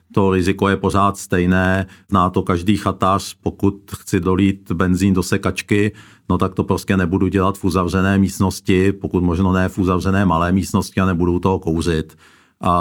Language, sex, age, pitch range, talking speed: Czech, male, 50-69, 90-100 Hz, 170 wpm